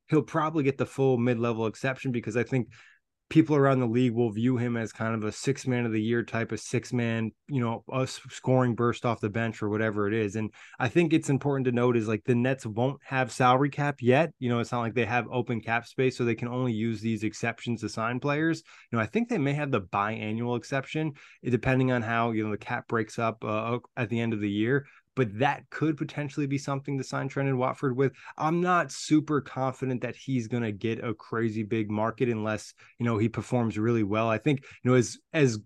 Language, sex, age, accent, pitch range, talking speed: English, male, 20-39, American, 110-130 Hz, 235 wpm